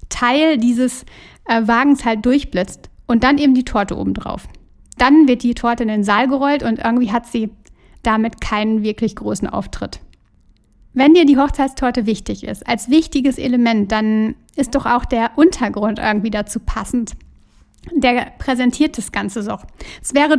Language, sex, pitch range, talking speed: German, female, 230-275 Hz, 160 wpm